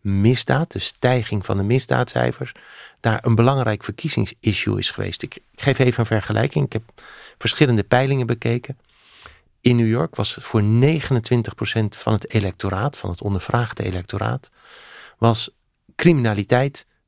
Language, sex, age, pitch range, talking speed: Dutch, male, 40-59, 105-125 Hz, 130 wpm